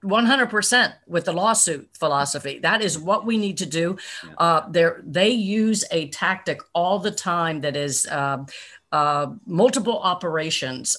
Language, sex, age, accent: English, female, 50-69, American